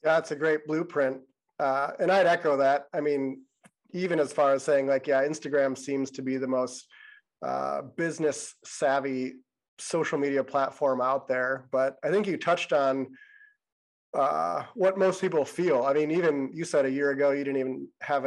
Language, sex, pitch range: English, male, 135-155 Hz